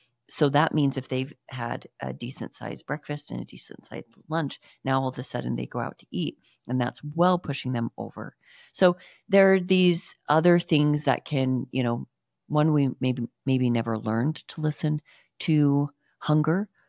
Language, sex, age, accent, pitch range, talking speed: English, female, 40-59, American, 125-160 Hz, 180 wpm